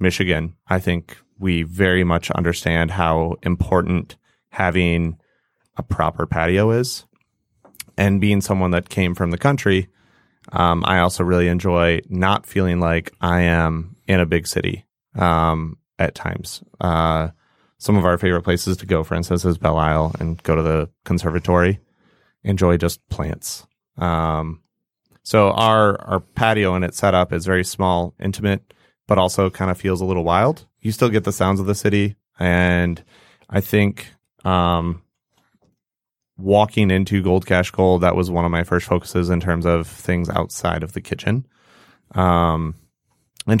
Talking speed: 160 wpm